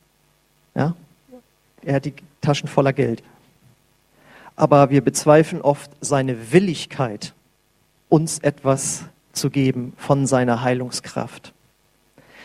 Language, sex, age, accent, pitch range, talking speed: German, male, 40-59, German, 140-170 Hz, 90 wpm